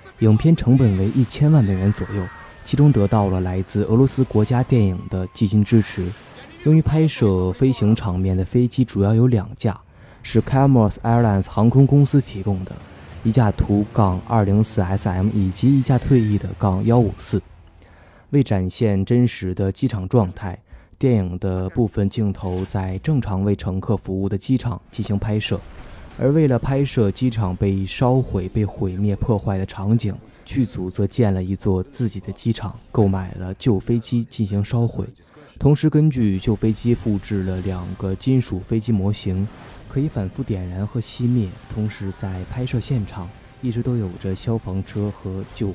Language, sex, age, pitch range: Chinese, male, 20-39, 95-120 Hz